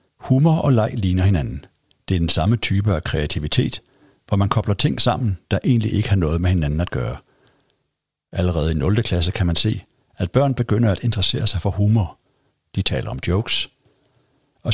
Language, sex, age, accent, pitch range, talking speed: Danish, male, 60-79, native, 90-115 Hz, 185 wpm